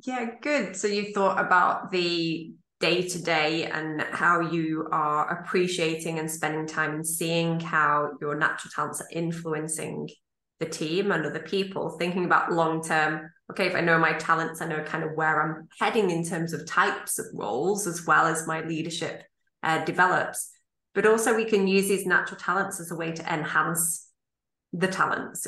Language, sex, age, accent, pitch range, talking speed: English, female, 20-39, British, 160-195 Hz, 180 wpm